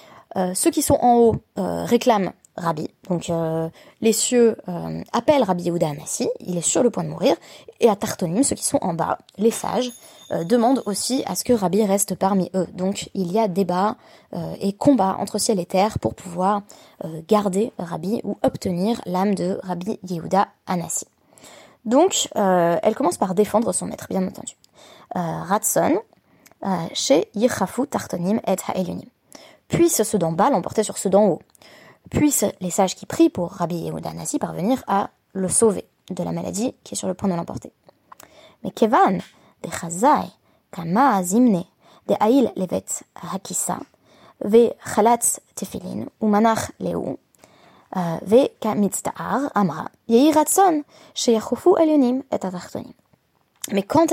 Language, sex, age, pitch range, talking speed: French, female, 20-39, 185-245 Hz, 135 wpm